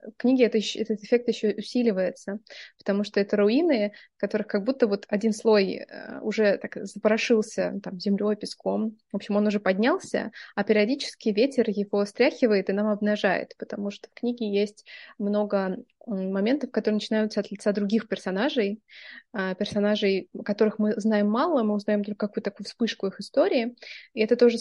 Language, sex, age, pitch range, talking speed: Russian, female, 20-39, 200-225 Hz, 160 wpm